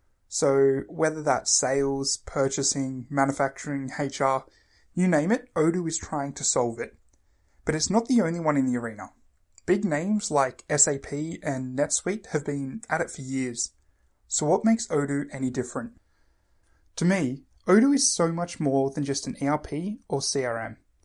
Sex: male